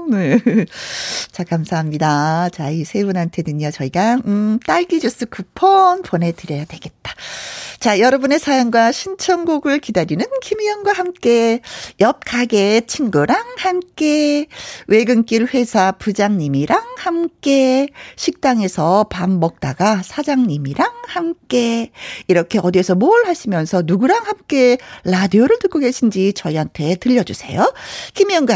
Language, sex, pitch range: Korean, female, 190-305 Hz